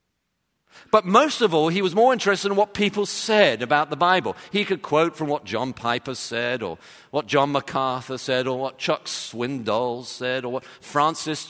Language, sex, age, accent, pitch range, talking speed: English, male, 50-69, British, 120-185 Hz, 190 wpm